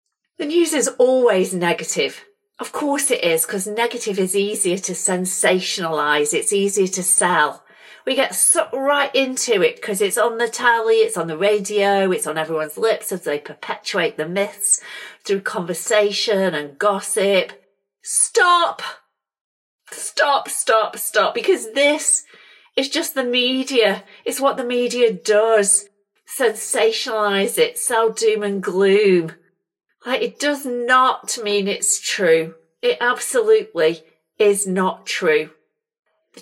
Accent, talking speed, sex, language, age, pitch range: British, 130 wpm, female, English, 40-59, 185-270 Hz